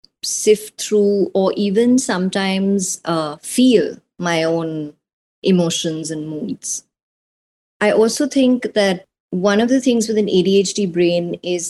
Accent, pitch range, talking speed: Indian, 175-205 Hz, 130 wpm